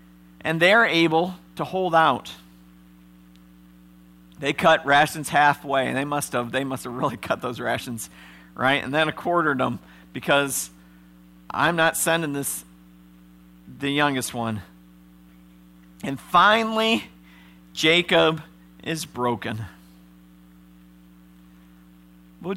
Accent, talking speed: American, 105 wpm